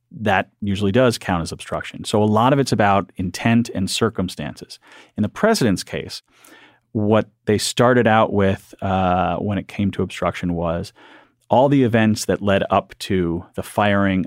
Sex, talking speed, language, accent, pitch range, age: male, 170 wpm, English, American, 95-115 Hz, 30-49